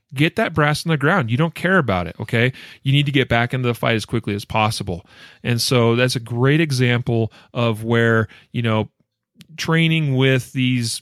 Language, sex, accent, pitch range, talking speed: English, male, American, 110-135 Hz, 200 wpm